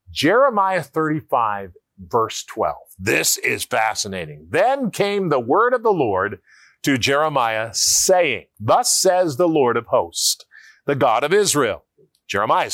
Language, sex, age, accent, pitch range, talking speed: English, male, 50-69, American, 145-210 Hz, 130 wpm